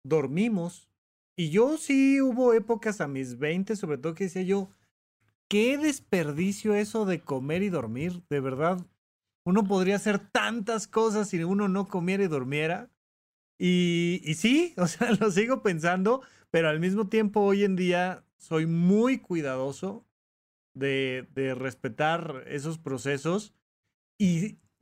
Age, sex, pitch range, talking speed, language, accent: 30-49, male, 160-205 Hz, 140 wpm, Spanish, Mexican